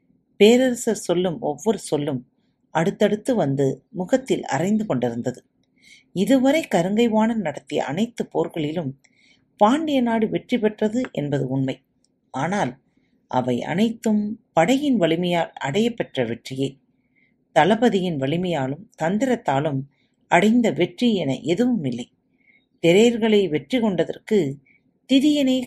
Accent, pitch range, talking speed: native, 145-230 Hz, 95 wpm